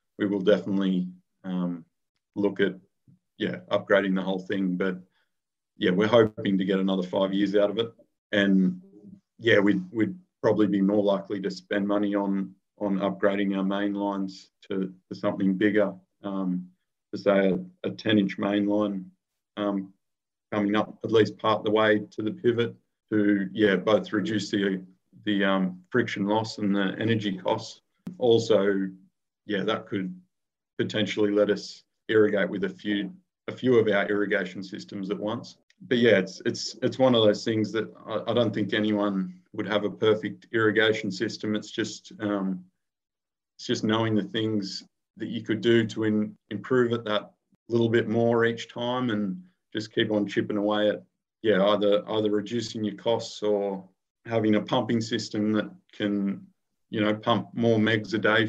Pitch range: 100-110 Hz